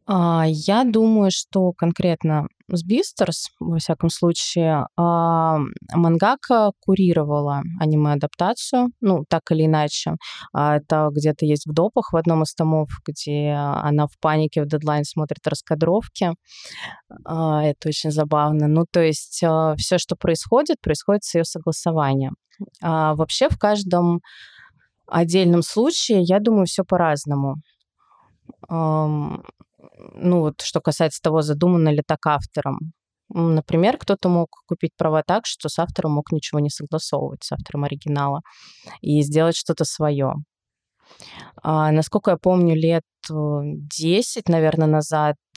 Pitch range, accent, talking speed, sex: 150-175 Hz, native, 120 wpm, female